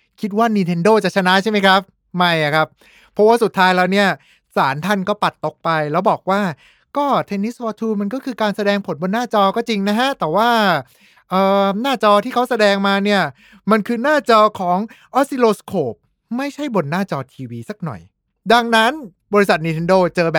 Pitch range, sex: 170-215 Hz, male